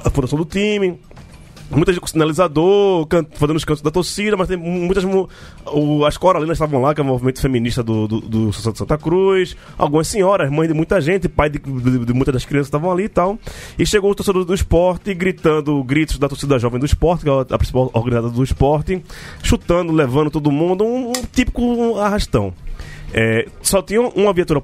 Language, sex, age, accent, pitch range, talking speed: Portuguese, male, 20-39, Brazilian, 120-180 Hz, 200 wpm